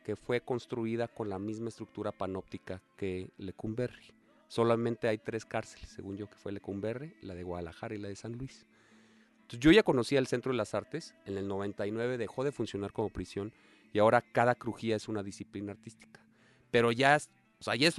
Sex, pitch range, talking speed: male, 105-135 Hz, 195 wpm